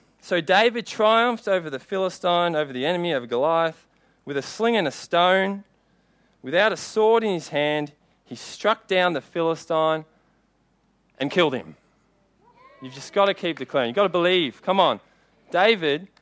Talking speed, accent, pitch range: 165 wpm, Australian, 145-185 Hz